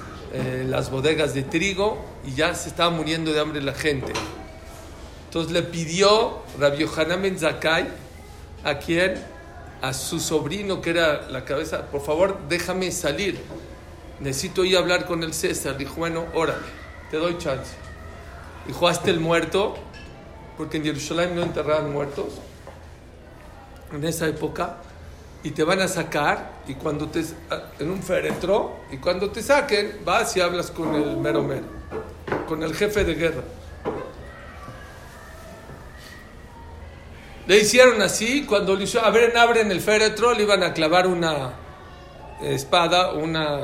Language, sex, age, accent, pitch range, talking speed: English, male, 50-69, Mexican, 135-175 Hz, 145 wpm